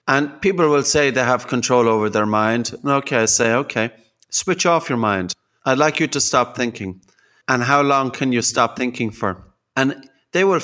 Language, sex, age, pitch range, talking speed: English, male, 30-49, 115-140 Hz, 195 wpm